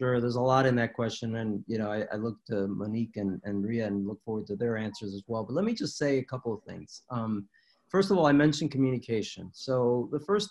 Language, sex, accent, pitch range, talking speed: English, male, American, 115-150 Hz, 255 wpm